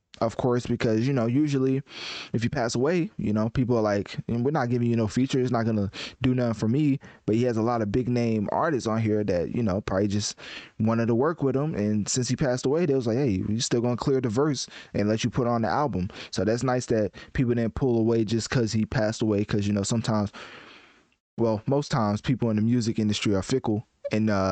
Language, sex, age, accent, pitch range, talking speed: English, male, 20-39, American, 105-125 Hz, 250 wpm